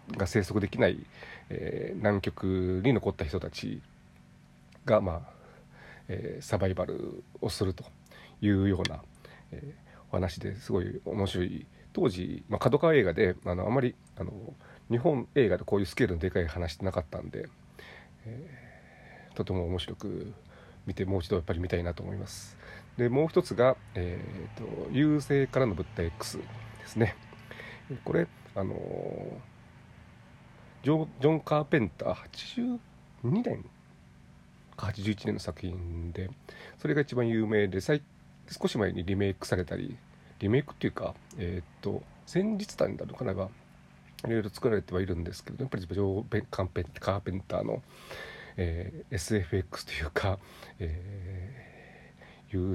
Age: 40-59